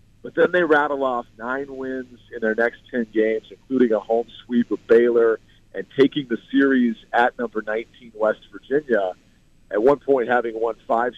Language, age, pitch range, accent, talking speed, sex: English, 40-59, 115-155 Hz, American, 175 wpm, male